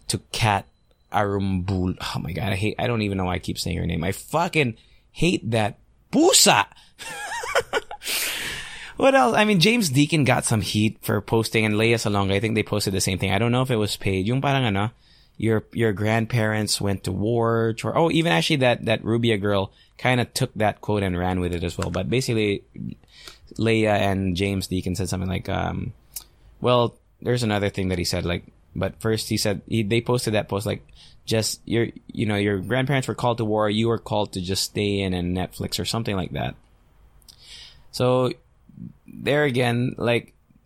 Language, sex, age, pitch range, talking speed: English, male, 20-39, 100-125 Hz, 195 wpm